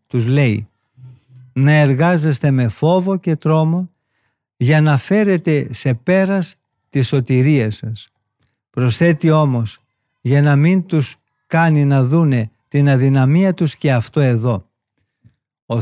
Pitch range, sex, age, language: 125-160 Hz, male, 50-69, Greek